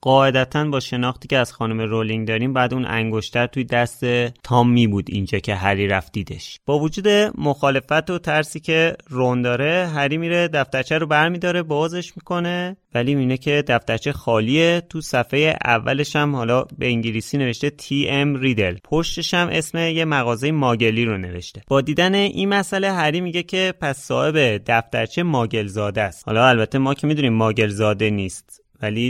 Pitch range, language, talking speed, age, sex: 110-155 Hz, Persian, 165 wpm, 30-49, male